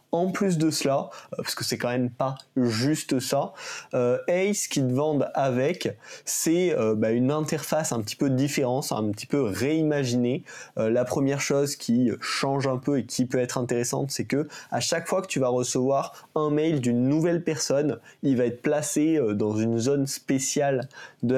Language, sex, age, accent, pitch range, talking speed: French, male, 20-39, French, 125-150 Hz, 175 wpm